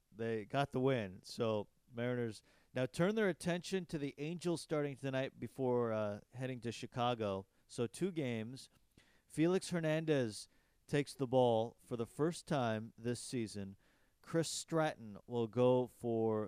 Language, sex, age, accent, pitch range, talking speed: English, male, 40-59, American, 105-135 Hz, 140 wpm